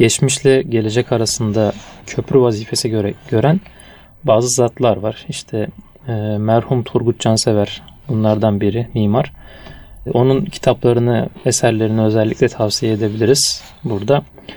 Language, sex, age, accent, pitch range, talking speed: Turkish, male, 30-49, native, 110-130 Hz, 105 wpm